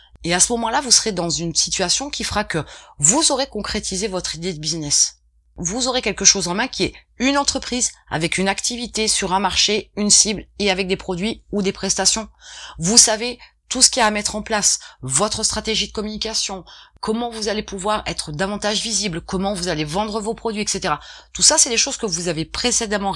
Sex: female